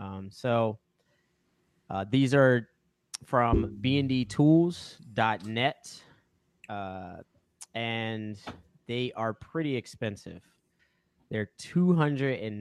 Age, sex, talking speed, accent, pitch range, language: 20-39, male, 80 wpm, American, 110-130 Hz, English